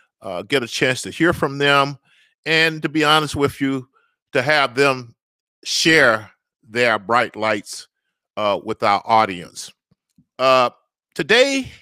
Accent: American